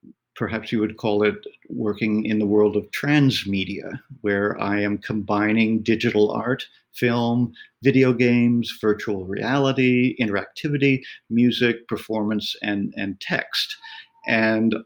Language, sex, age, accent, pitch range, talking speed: English, male, 50-69, American, 105-125 Hz, 115 wpm